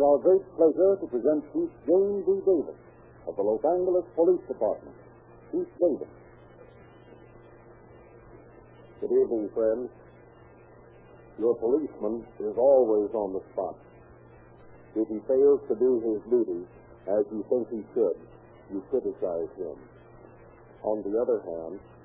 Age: 60-79